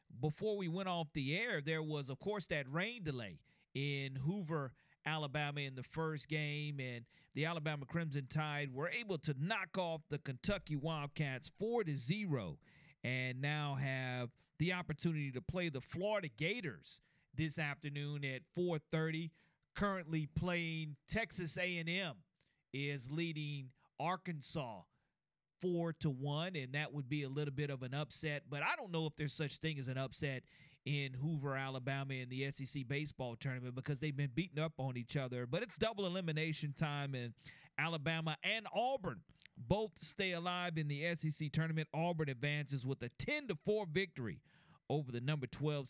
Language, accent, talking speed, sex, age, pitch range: English, American, 165 wpm, male, 40-59, 135-165 Hz